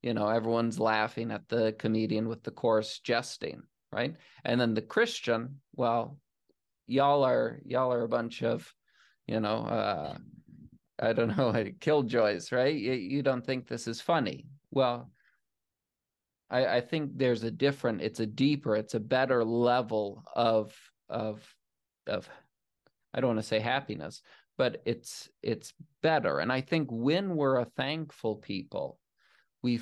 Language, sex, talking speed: English, male, 155 wpm